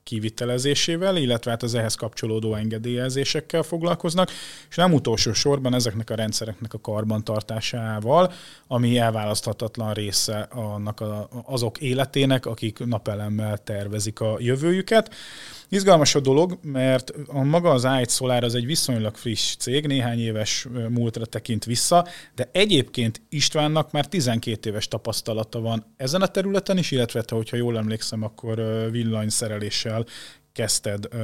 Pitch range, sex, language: 110-145 Hz, male, Hungarian